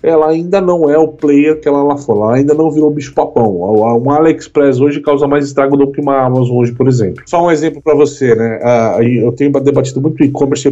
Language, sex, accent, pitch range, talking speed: Portuguese, male, Brazilian, 120-155 Hz, 220 wpm